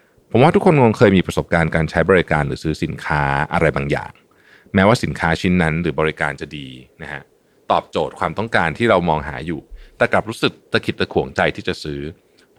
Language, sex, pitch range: Thai, male, 75-100 Hz